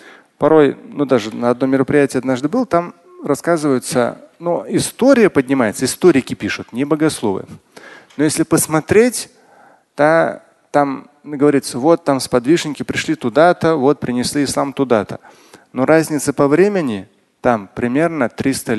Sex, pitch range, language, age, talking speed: male, 125-170 Hz, Russian, 30-49, 130 wpm